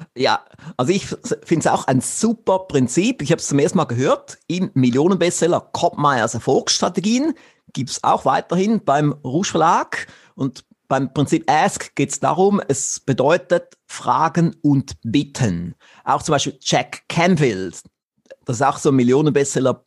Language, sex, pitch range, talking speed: German, male, 130-175 Hz, 150 wpm